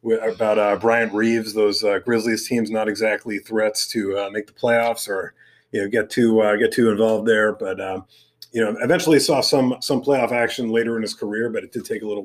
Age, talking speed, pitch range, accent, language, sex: 30-49, 230 wpm, 105-120 Hz, American, English, male